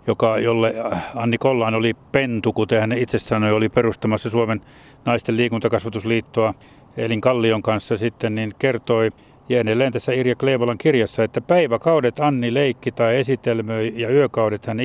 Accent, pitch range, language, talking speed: native, 110-135 Hz, Finnish, 135 wpm